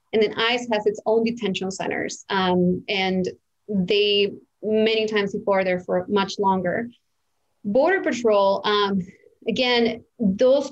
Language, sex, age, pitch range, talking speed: English, female, 20-39, 195-225 Hz, 135 wpm